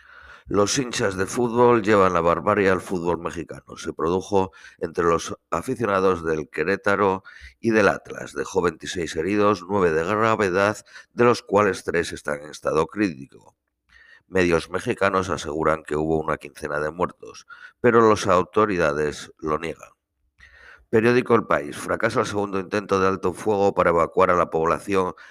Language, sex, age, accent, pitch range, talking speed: Spanish, male, 50-69, Spanish, 80-105 Hz, 150 wpm